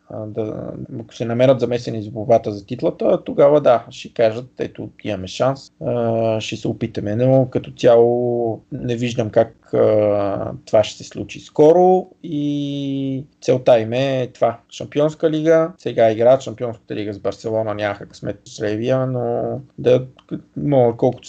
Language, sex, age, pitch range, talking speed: Bulgarian, male, 20-39, 105-130 Hz, 140 wpm